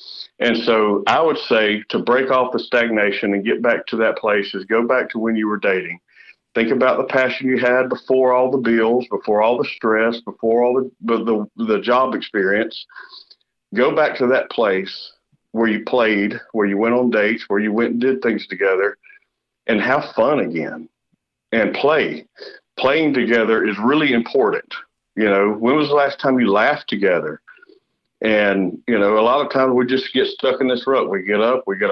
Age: 50-69